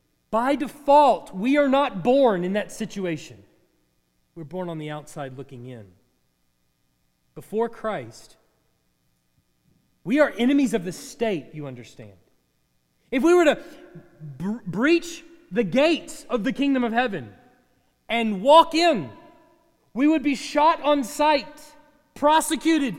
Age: 30-49